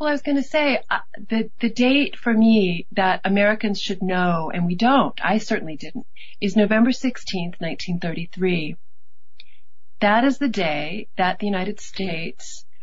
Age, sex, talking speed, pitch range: 40-59, female, 160 wpm, 180-235 Hz